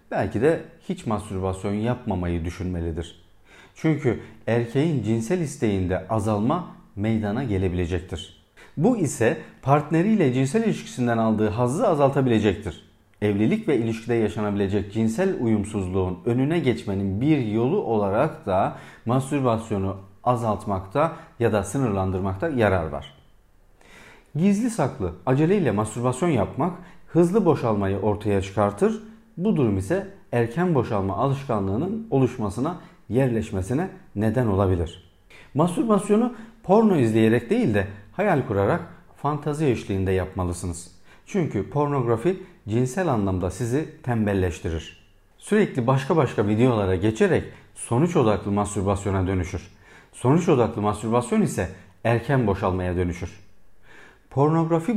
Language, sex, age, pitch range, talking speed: Turkish, male, 40-59, 100-145 Hz, 100 wpm